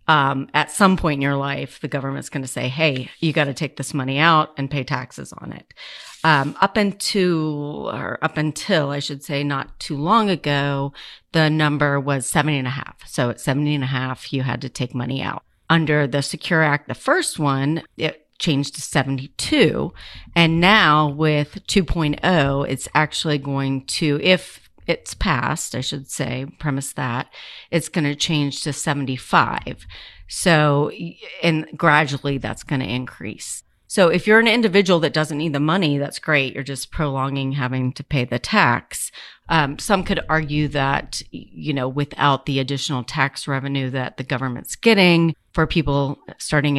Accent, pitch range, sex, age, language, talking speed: American, 135-160 Hz, female, 40-59, English, 175 wpm